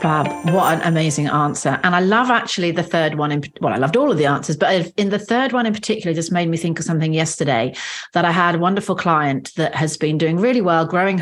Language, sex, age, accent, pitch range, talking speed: English, female, 40-59, British, 160-205 Hz, 245 wpm